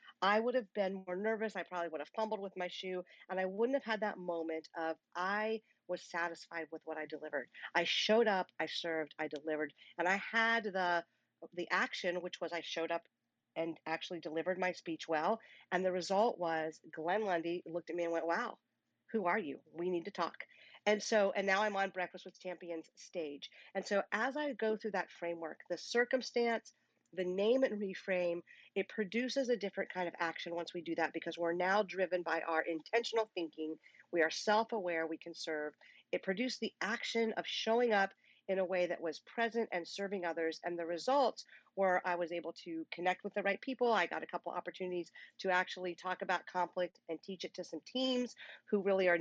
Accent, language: American, English